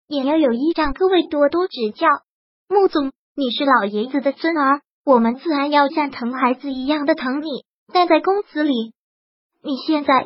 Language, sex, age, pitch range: Chinese, male, 20-39, 265-330 Hz